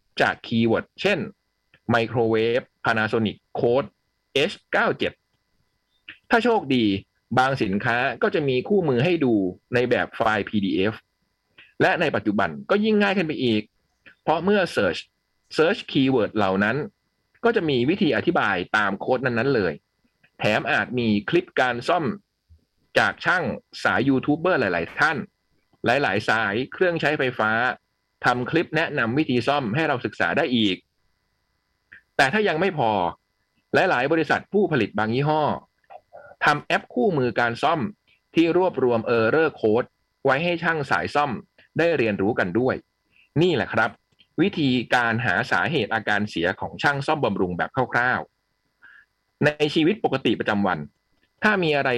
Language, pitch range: Thai, 110-155 Hz